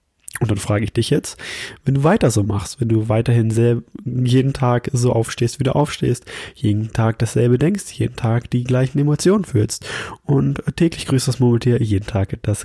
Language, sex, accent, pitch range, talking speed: German, male, German, 110-130 Hz, 190 wpm